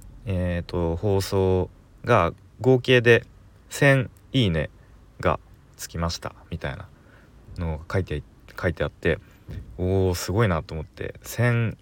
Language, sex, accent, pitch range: Japanese, male, native, 85-105 Hz